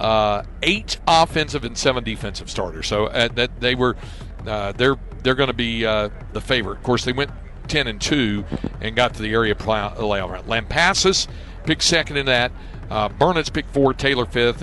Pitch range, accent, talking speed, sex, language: 105-135 Hz, American, 195 wpm, male, English